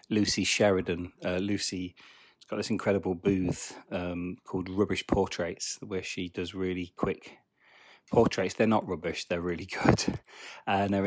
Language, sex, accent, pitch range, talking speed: English, male, British, 90-105 Hz, 140 wpm